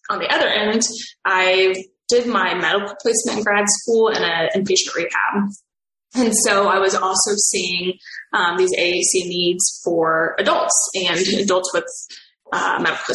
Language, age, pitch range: English, 20-39, 195-230 Hz